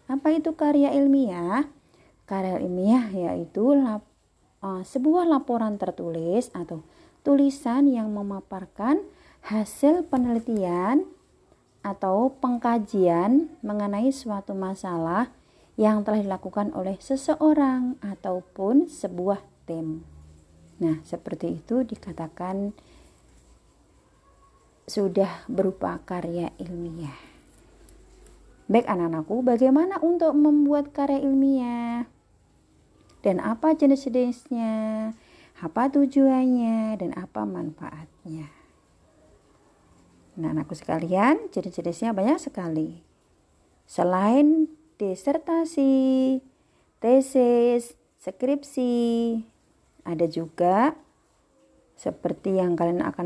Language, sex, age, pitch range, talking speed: Indonesian, female, 30-49, 175-270 Hz, 80 wpm